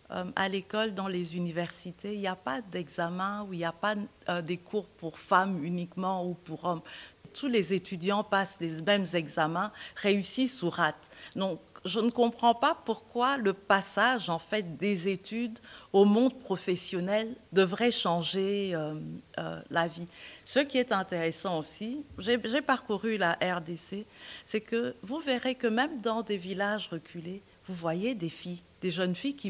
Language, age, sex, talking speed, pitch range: French, 50-69, female, 170 wpm, 170-225 Hz